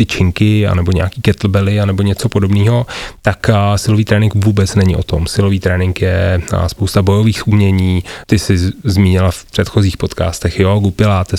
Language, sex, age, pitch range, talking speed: Slovak, male, 30-49, 90-105 Hz, 150 wpm